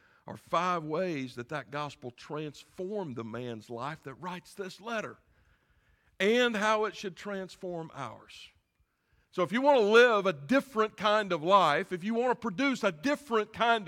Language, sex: English, male